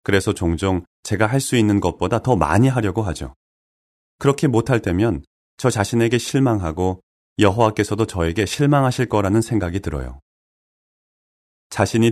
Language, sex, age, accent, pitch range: Korean, male, 30-49, native, 85-125 Hz